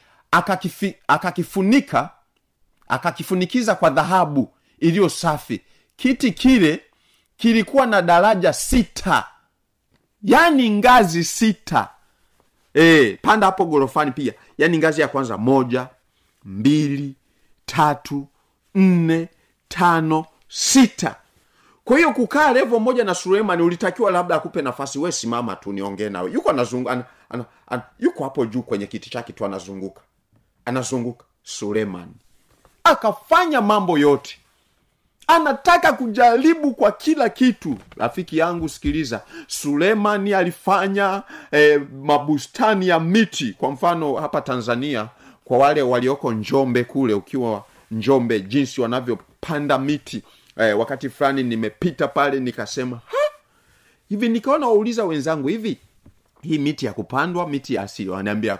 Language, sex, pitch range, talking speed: Swahili, male, 130-210 Hz, 115 wpm